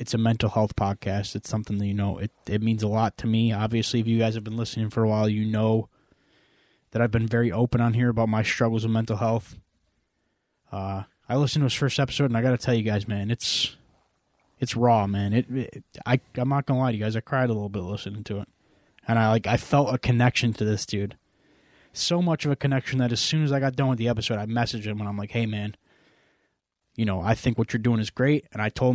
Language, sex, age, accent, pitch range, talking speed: English, male, 20-39, American, 105-125 Hz, 260 wpm